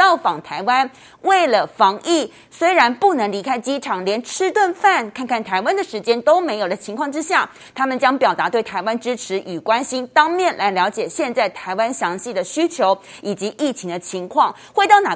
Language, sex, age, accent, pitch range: Chinese, female, 30-49, native, 205-295 Hz